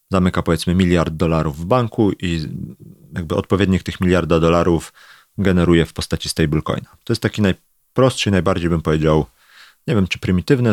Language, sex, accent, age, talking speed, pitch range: Polish, male, native, 40-59, 155 wpm, 85-105 Hz